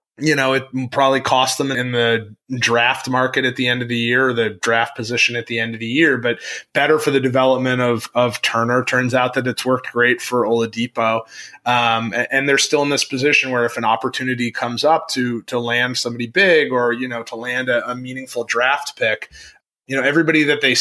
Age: 30-49